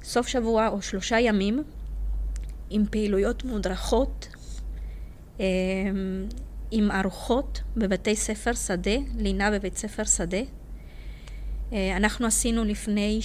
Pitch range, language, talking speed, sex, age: 190-230 Hz, Hebrew, 90 wpm, female, 30-49